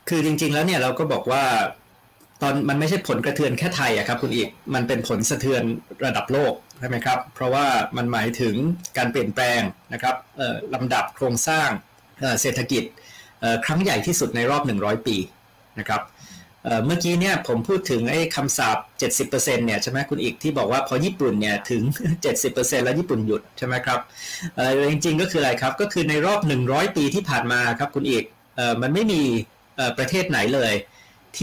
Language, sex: Thai, male